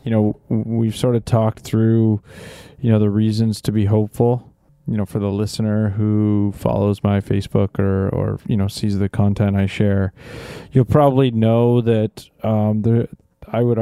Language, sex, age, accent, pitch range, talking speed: English, male, 20-39, American, 105-135 Hz, 175 wpm